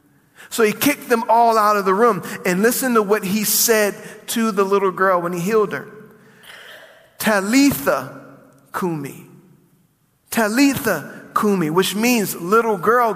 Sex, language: male, English